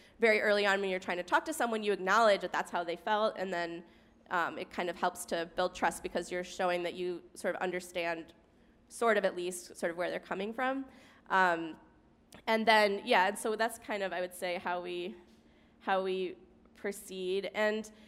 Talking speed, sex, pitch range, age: 210 wpm, female, 180-220 Hz, 20-39